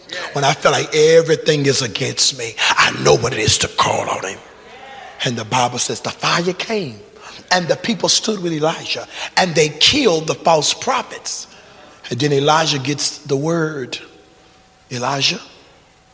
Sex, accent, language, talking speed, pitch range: male, American, English, 160 wpm, 150-230 Hz